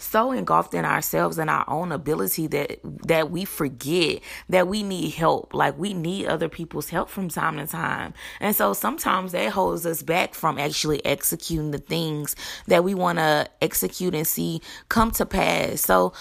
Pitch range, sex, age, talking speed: 150-190 Hz, female, 20-39, 180 wpm